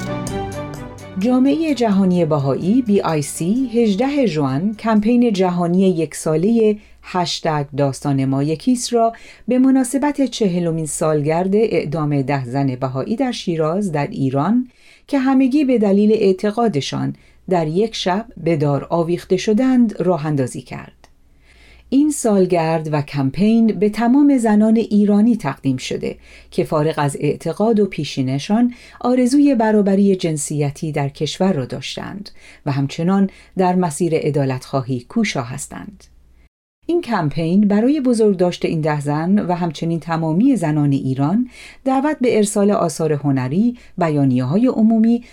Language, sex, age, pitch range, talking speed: Persian, female, 40-59, 145-225 Hz, 120 wpm